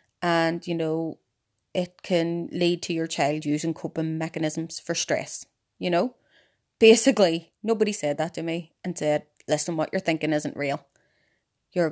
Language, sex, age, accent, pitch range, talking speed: English, female, 20-39, Irish, 160-185 Hz, 155 wpm